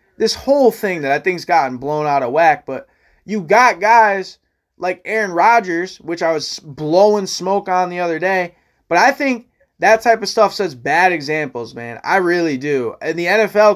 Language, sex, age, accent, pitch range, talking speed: English, male, 20-39, American, 170-245 Hz, 190 wpm